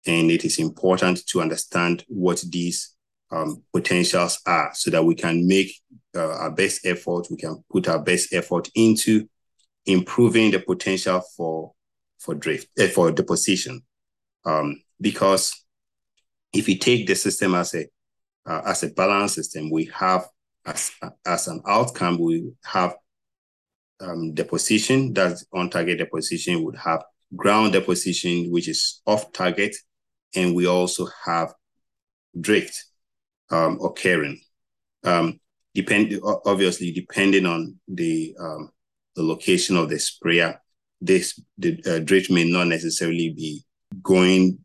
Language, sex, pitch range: English, male, 85-95 Hz